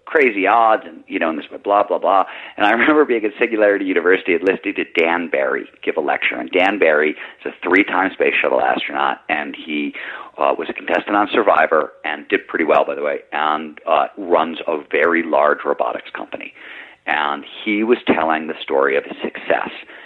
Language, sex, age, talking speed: English, male, 40-59, 200 wpm